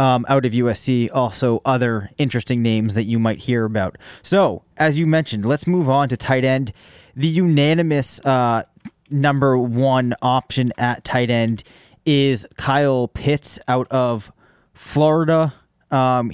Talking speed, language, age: 145 wpm, English, 20-39